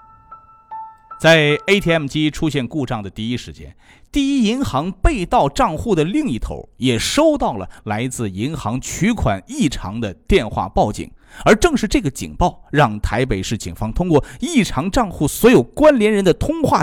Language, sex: Chinese, male